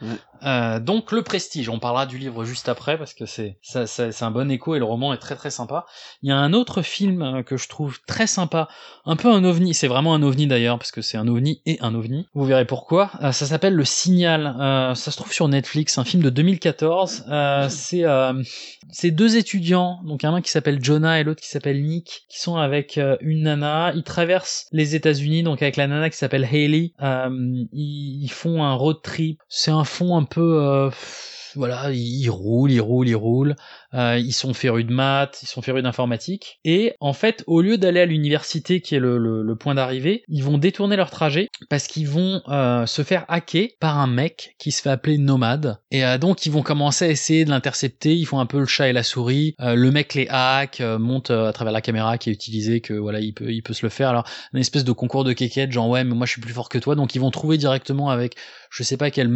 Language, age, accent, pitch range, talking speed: French, 20-39, French, 125-160 Hz, 245 wpm